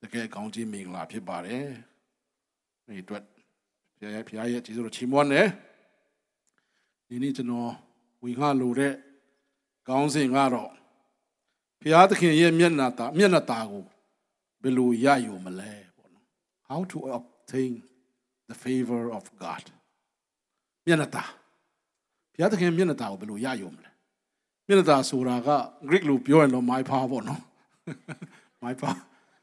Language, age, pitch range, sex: English, 60-79, 125-175 Hz, male